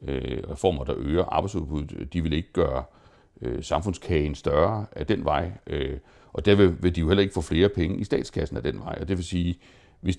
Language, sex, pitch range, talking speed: Danish, male, 75-95 Hz, 210 wpm